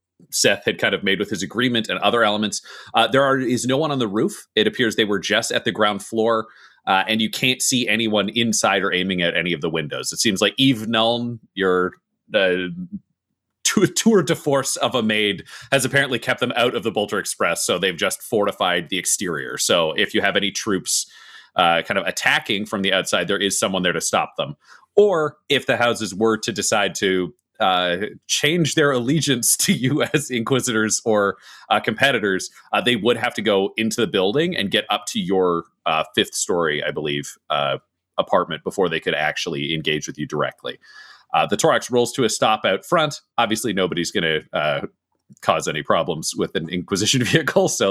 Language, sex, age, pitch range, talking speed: English, male, 30-49, 95-130 Hz, 200 wpm